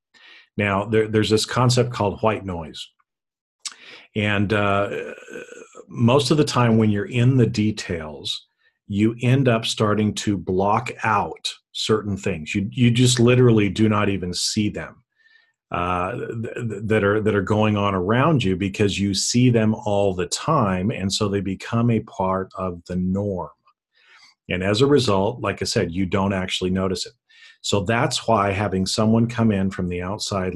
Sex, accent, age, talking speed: male, American, 40-59, 165 wpm